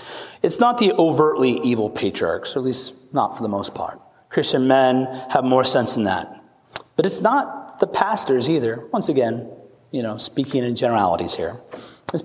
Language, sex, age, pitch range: English, male, 30-49, 125-160 Hz